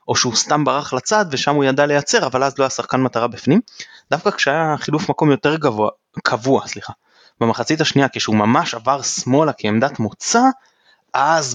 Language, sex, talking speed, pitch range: Hebrew, male, 170 wpm, 115-140 Hz